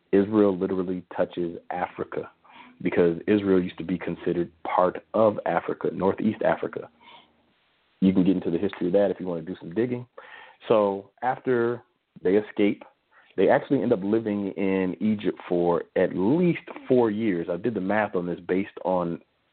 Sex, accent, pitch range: male, American, 90-110 Hz